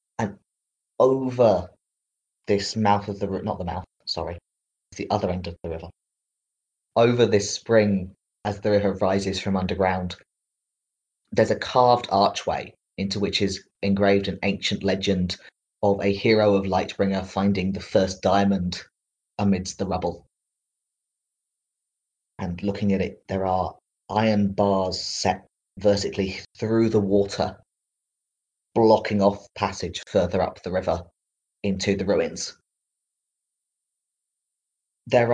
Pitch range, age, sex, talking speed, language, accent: 95-105 Hz, 20-39, male, 120 wpm, English, British